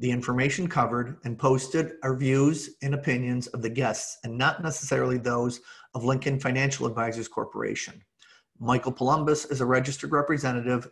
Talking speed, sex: 150 wpm, male